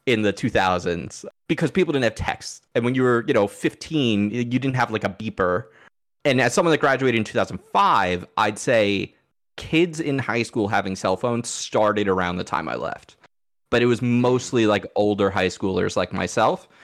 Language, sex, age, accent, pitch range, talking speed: English, male, 30-49, American, 100-125 Hz, 190 wpm